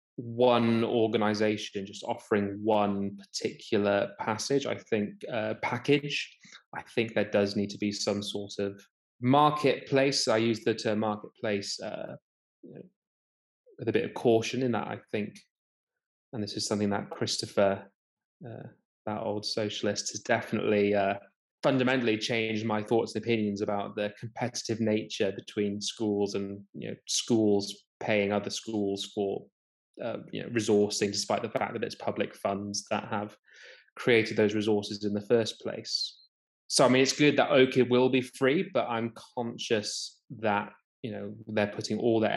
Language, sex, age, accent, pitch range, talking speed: English, male, 20-39, British, 100-115 Hz, 155 wpm